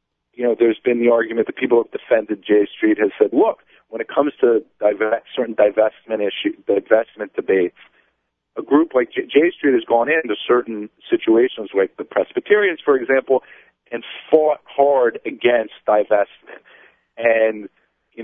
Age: 40-59